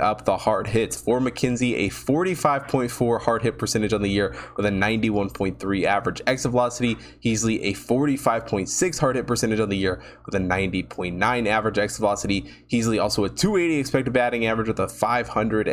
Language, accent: English, American